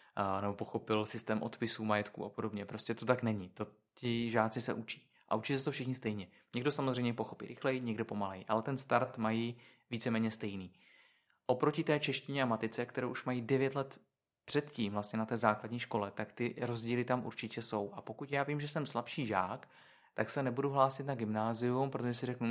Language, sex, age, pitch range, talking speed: Czech, male, 20-39, 110-125 Hz, 195 wpm